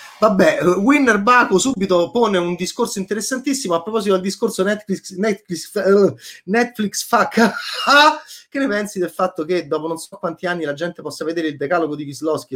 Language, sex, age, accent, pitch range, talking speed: Italian, male, 30-49, native, 140-205 Hz, 180 wpm